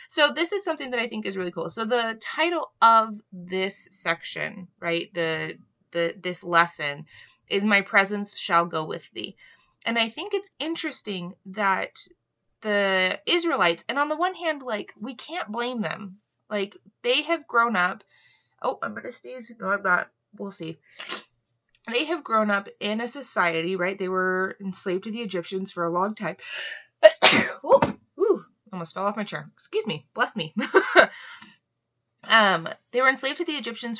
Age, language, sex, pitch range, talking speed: 20-39, English, female, 185-255 Hz, 170 wpm